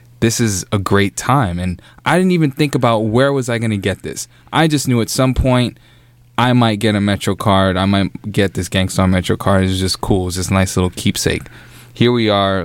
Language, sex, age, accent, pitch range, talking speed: English, male, 20-39, American, 95-120 Hz, 235 wpm